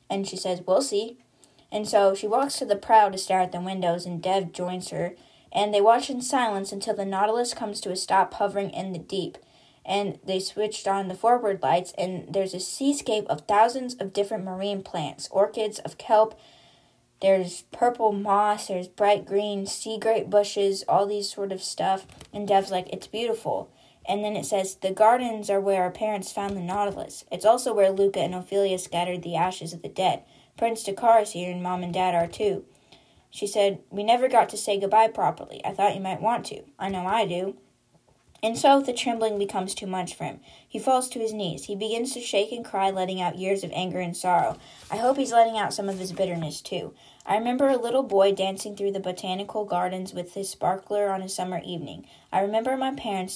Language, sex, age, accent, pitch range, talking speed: English, female, 10-29, American, 185-220 Hz, 215 wpm